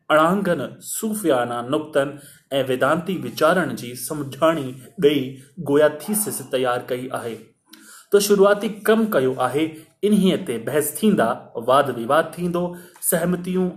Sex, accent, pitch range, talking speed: male, native, 135-180 Hz, 100 wpm